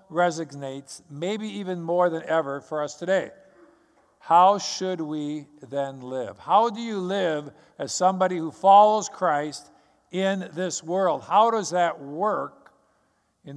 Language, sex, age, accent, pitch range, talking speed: English, male, 50-69, American, 160-190 Hz, 135 wpm